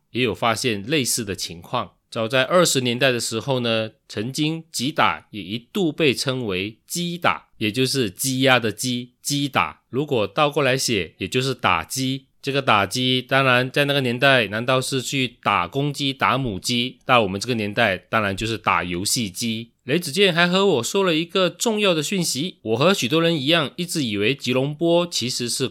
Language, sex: Chinese, male